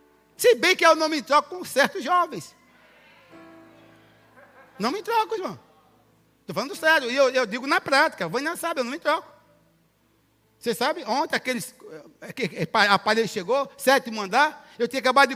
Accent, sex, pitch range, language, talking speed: Brazilian, male, 255-325 Hz, Portuguese, 160 wpm